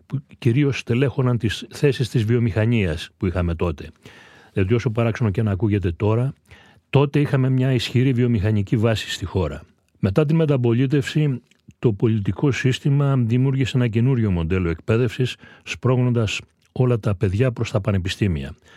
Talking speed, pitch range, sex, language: 135 wpm, 95-130 Hz, male, Greek